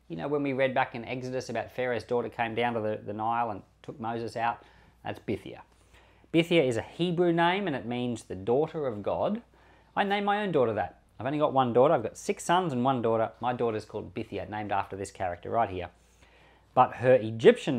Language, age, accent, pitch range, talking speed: English, 40-59, Australian, 100-135 Hz, 225 wpm